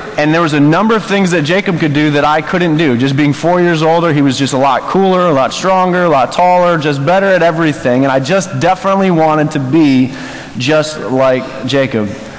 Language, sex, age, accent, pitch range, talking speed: English, male, 20-39, American, 145-190 Hz, 225 wpm